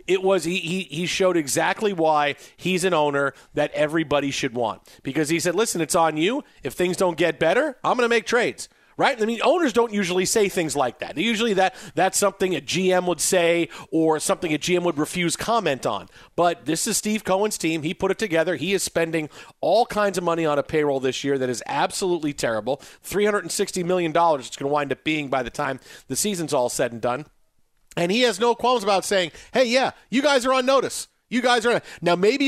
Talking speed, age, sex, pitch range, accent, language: 225 wpm, 40-59, male, 155-225 Hz, American, English